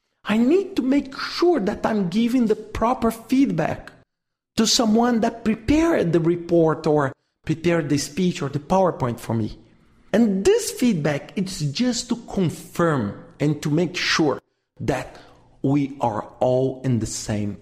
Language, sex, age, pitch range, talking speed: English, male, 50-69, 150-220 Hz, 150 wpm